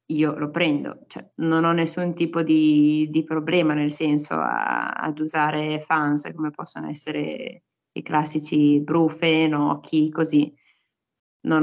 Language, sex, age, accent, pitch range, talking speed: Italian, female, 20-39, native, 155-170 Hz, 140 wpm